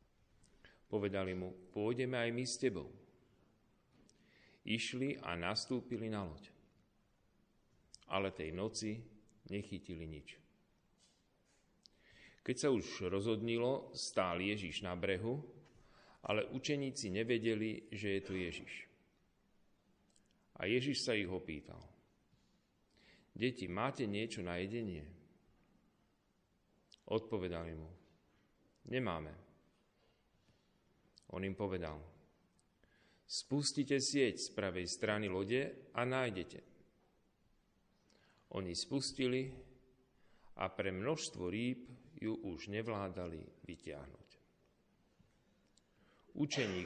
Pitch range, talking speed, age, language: 95-125 Hz, 85 wpm, 40-59, Slovak